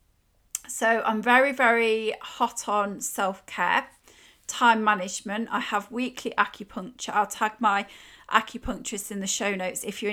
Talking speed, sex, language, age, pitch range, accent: 135 wpm, female, English, 30-49, 205-240 Hz, British